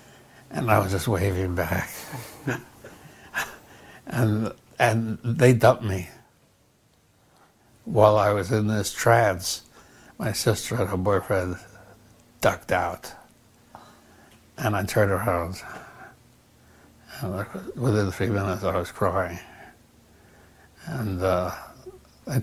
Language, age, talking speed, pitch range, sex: English, 60-79, 100 wpm, 95-110 Hz, male